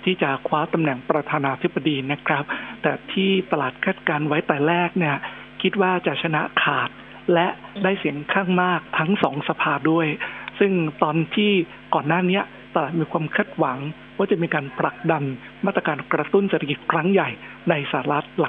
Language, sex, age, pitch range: Thai, male, 60-79, 155-185 Hz